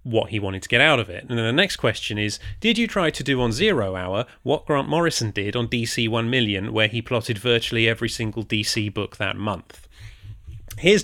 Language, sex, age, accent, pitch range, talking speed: English, male, 30-49, British, 105-130 Hz, 225 wpm